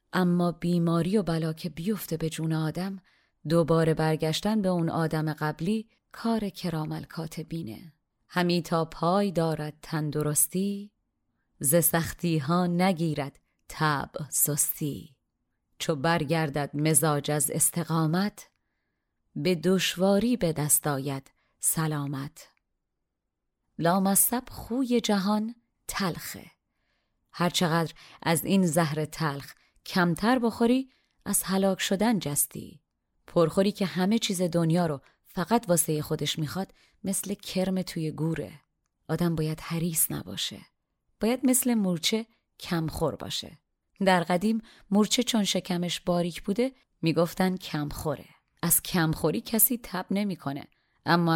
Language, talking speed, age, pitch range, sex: Persian, 105 wpm, 30-49, 160-195 Hz, female